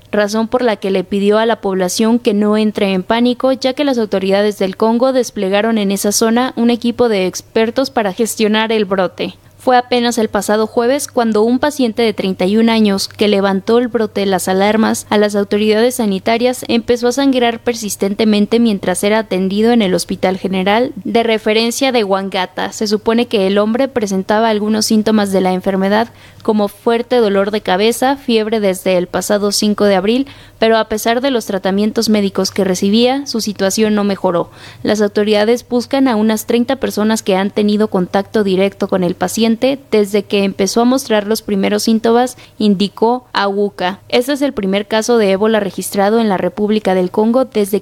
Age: 20-39